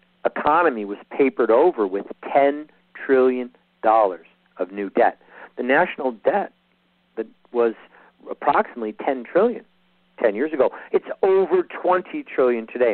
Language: English